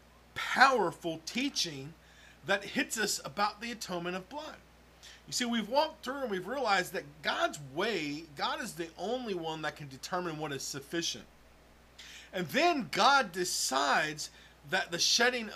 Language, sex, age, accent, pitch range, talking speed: English, male, 40-59, American, 170-230 Hz, 150 wpm